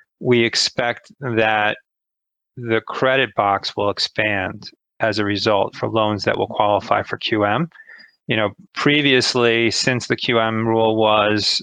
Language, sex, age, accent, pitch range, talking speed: English, male, 40-59, American, 110-130 Hz, 135 wpm